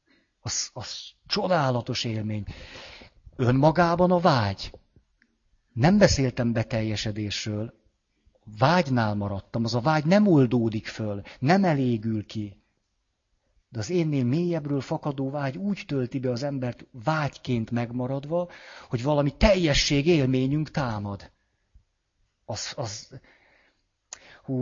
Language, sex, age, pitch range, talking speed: Hungarian, male, 50-69, 110-145 Hz, 100 wpm